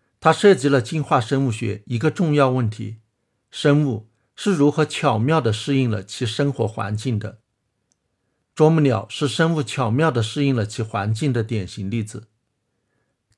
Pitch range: 110-145 Hz